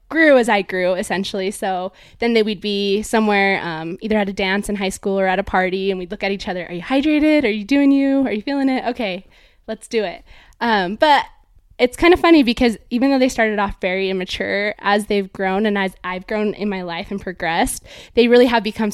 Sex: female